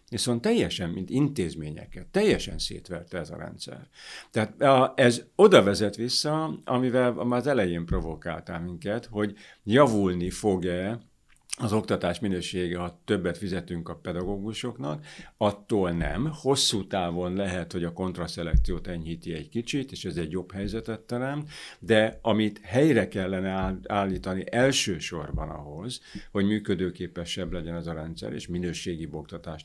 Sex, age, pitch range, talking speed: male, 60-79, 85-110 Hz, 130 wpm